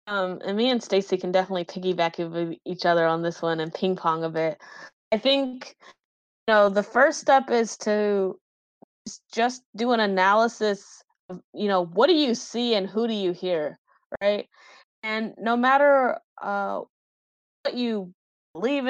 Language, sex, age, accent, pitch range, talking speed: English, female, 20-39, American, 195-255 Hz, 160 wpm